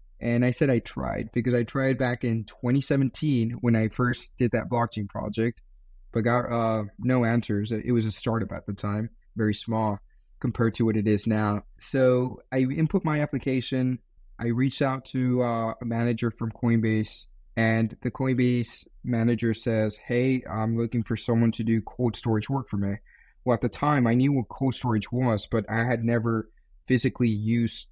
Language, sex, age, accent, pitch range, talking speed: English, male, 20-39, American, 110-125 Hz, 180 wpm